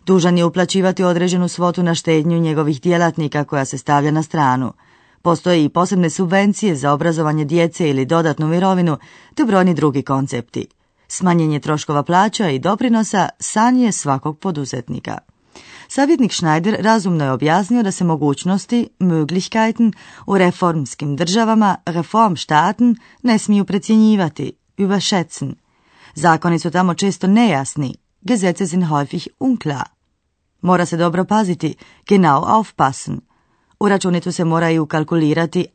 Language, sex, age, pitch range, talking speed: Croatian, female, 30-49, 150-210 Hz, 125 wpm